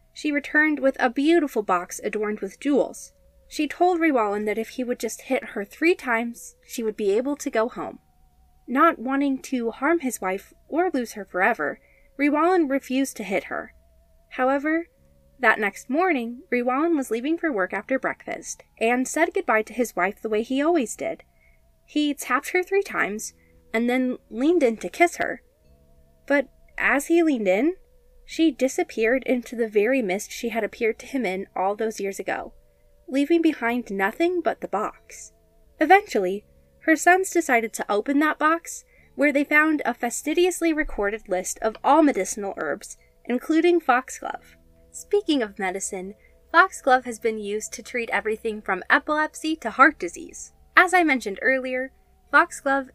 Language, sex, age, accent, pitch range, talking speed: English, female, 20-39, American, 220-310 Hz, 165 wpm